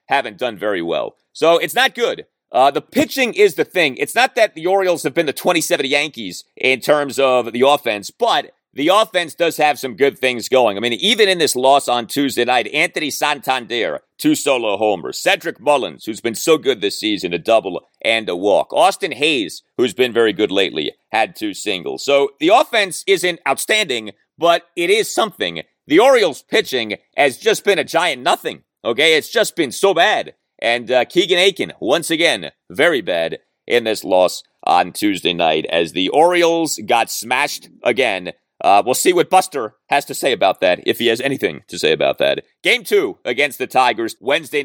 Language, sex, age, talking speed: English, male, 30-49, 190 wpm